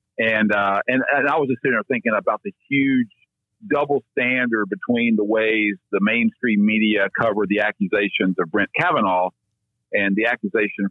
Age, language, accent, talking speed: 50-69, English, American, 165 wpm